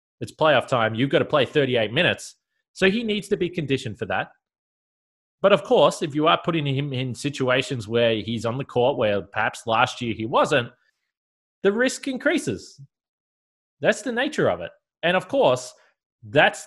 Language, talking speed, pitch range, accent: English, 180 wpm, 110-150 Hz, Australian